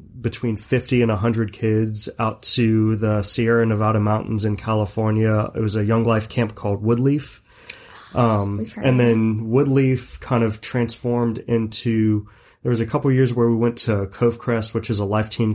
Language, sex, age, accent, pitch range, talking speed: English, male, 30-49, American, 105-120 Hz, 180 wpm